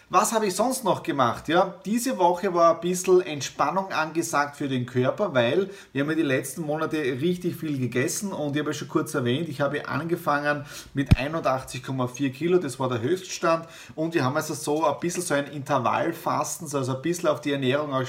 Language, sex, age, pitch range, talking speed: German, male, 30-49, 135-170 Hz, 200 wpm